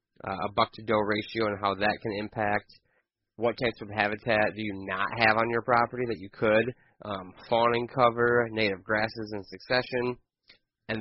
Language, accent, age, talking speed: English, American, 30-49, 180 wpm